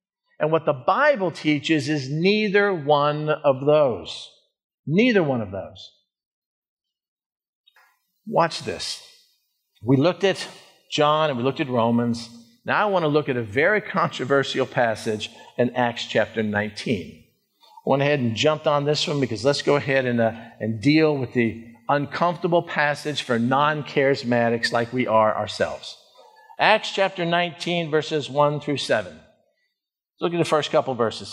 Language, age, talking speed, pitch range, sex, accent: English, 50-69, 150 wpm, 140-195 Hz, male, American